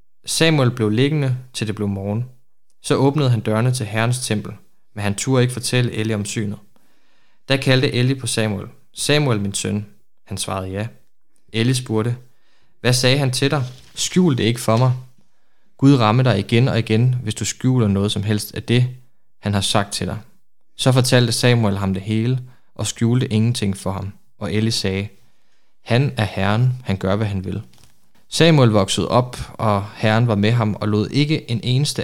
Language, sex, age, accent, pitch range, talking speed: Danish, male, 20-39, native, 105-125 Hz, 185 wpm